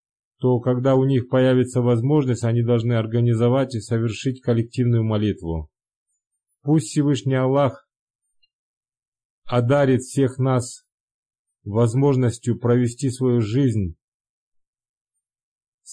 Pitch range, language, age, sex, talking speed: 115-135 Hz, Russian, 30-49, male, 85 wpm